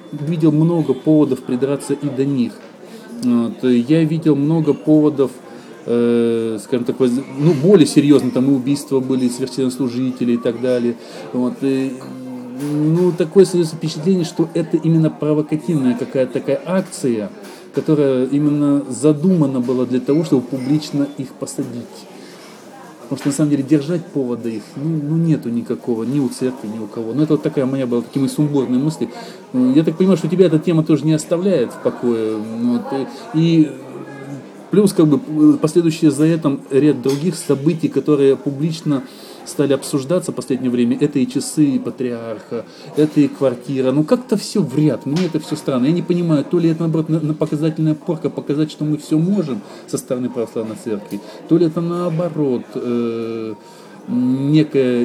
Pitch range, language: 130-160 Hz, Russian